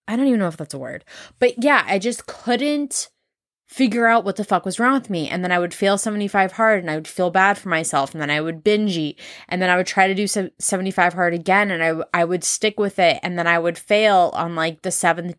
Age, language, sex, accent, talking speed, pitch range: 20-39, English, female, American, 275 wpm, 165-205 Hz